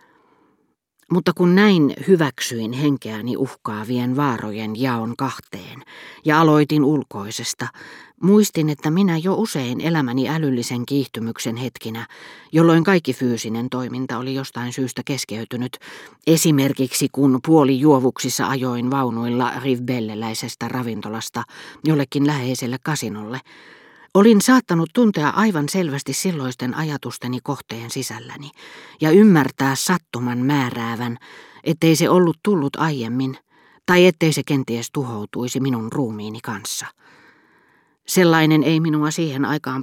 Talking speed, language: 105 wpm, Finnish